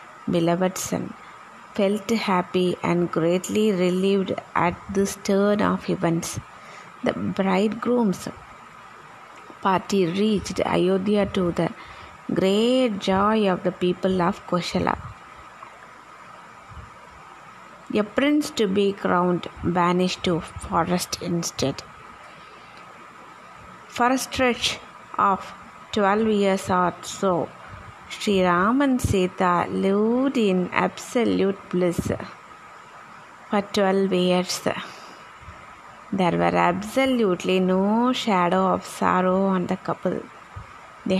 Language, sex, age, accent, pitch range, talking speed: Tamil, female, 20-39, native, 180-215 Hz, 95 wpm